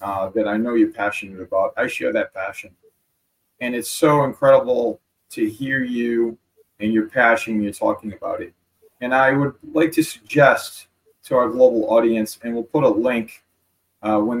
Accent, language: American, English